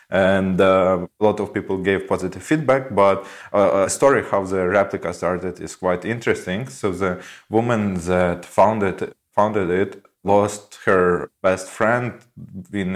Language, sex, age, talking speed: English, male, 20-39, 145 wpm